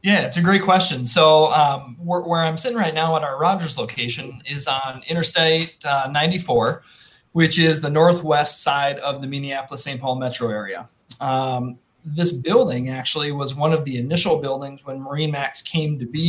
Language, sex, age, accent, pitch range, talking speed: English, male, 30-49, American, 125-155 Hz, 185 wpm